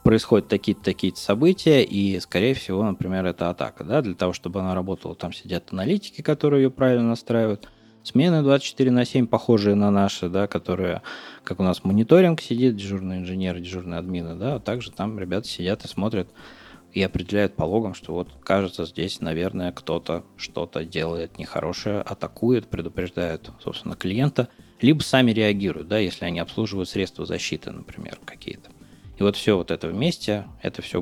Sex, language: male, Russian